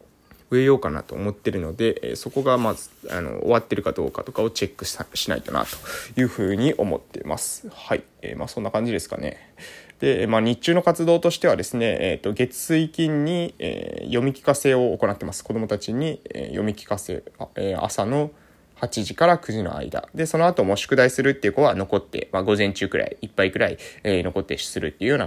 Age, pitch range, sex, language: 20-39, 100-150 Hz, male, Japanese